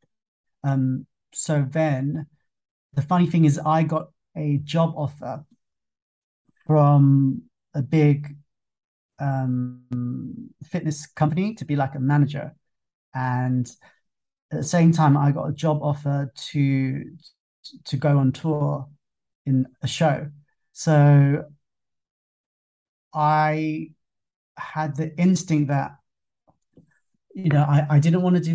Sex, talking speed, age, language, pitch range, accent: male, 115 wpm, 30-49, English, 140-160 Hz, British